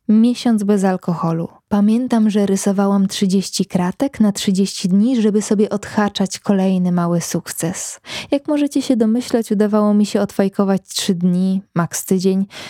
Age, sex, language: 20-39, female, Polish